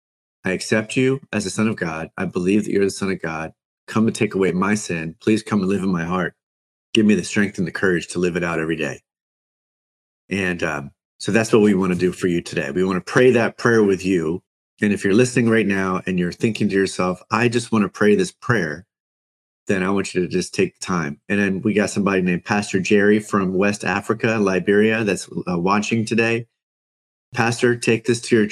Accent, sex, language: American, male, English